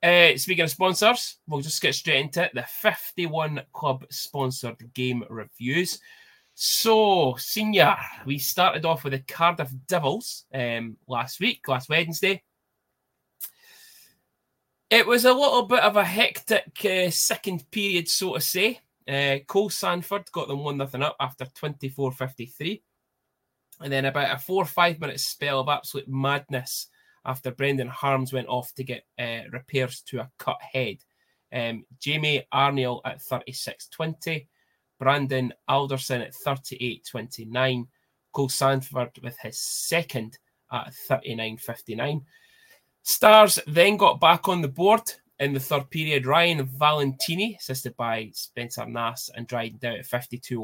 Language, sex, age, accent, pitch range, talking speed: English, male, 20-39, British, 130-170 Hz, 135 wpm